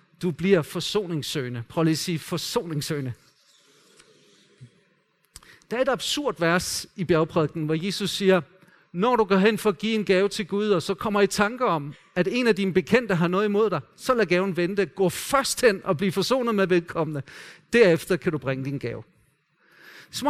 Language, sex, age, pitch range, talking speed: Danish, male, 40-59, 175-235 Hz, 185 wpm